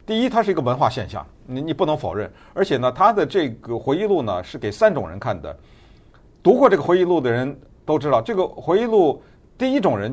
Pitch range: 110-155 Hz